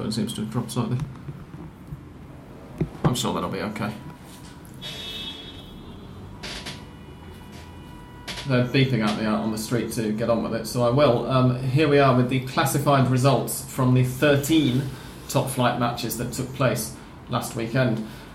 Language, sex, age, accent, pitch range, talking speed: English, male, 30-49, British, 120-145 Hz, 145 wpm